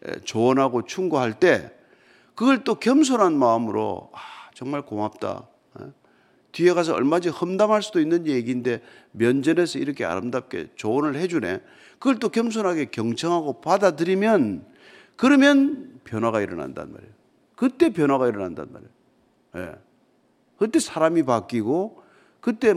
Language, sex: Korean, male